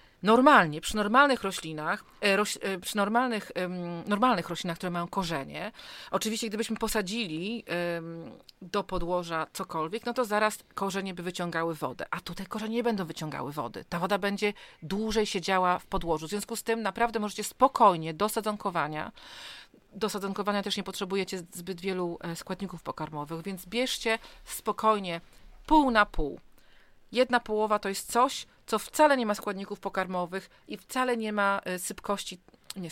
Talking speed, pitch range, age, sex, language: 145 wpm, 180-220 Hz, 40-59, female, Polish